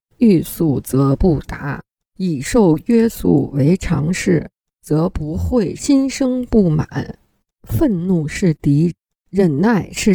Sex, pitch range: female, 160-215 Hz